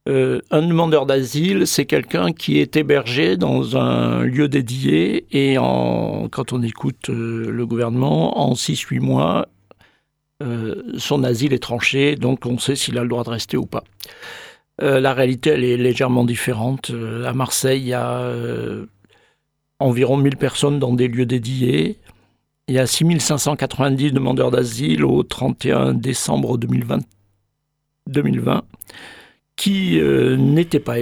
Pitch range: 115-140 Hz